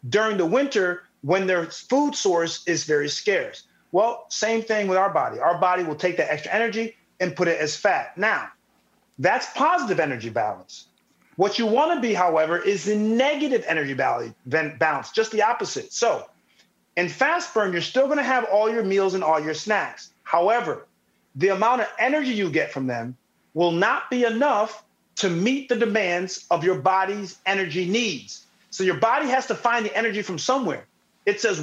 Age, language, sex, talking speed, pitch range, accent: 40-59, English, male, 185 wpm, 180-235 Hz, American